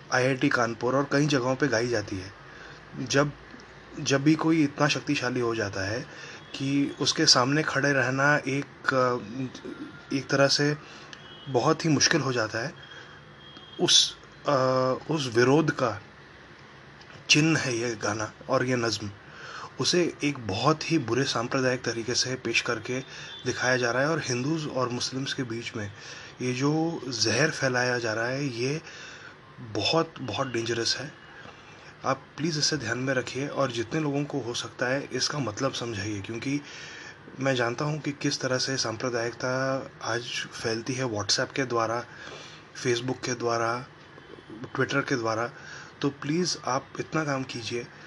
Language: Hindi